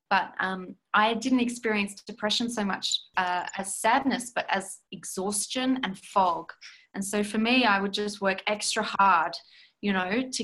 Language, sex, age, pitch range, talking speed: English, female, 20-39, 195-240 Hz, 165 wpm